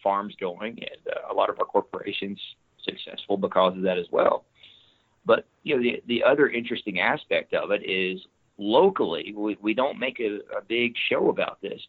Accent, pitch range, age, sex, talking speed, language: American, 100-110 Hz, 40-59, male, 185 wpm, English